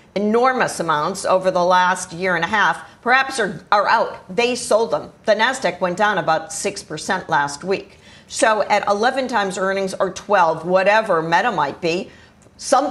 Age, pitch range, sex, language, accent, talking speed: 50-69, 185-225 Hz, female, English, American, 165 wpm